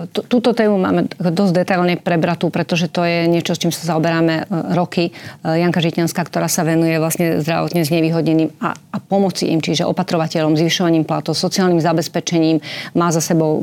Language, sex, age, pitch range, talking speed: Slovak, female, 30-49, 160-175 Hz, 160 wpm